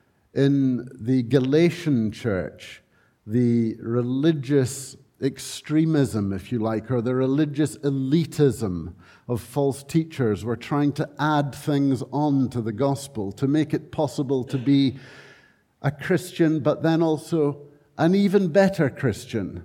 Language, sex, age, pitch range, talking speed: English, male, 60-79, 120-150 Hz, 125 wpm